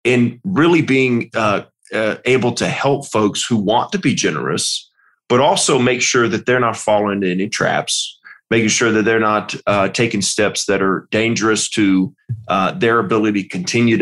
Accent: American